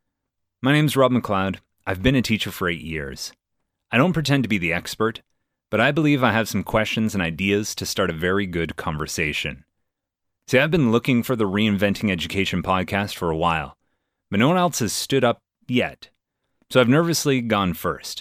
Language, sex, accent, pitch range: English, male, American, 90-120 Hz